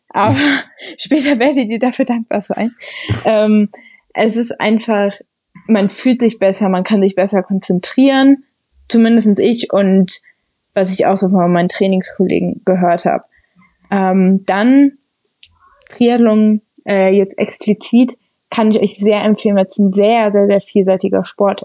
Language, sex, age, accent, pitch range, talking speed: German, female, 20-39, German, 195-225 Hz, 145 wpm